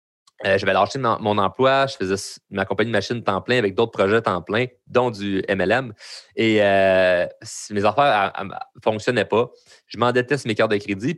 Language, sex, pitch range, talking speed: French, male, 105-130 Hz, 195 wpm